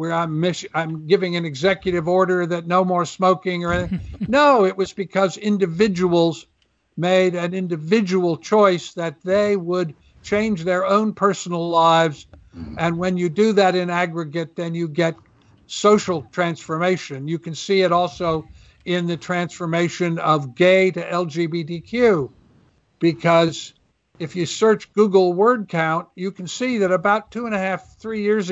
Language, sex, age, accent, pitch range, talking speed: English, male, 60-79, American, 170-195 Hz, 150 wpm